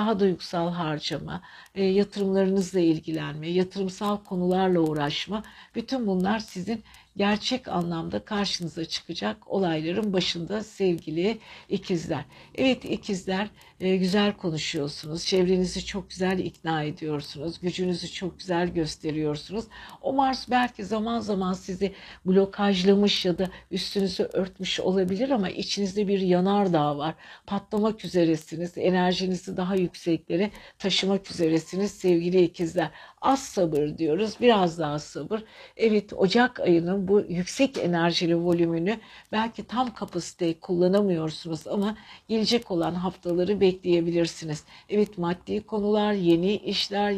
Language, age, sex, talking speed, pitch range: Turkish, 60-79, female, 110 wpm, 170-205 Hz